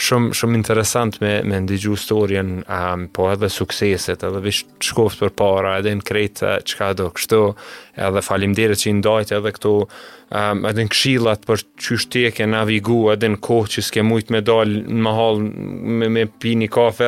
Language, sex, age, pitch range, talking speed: English, male, 20-39, 105-120 Hz, 160 wpm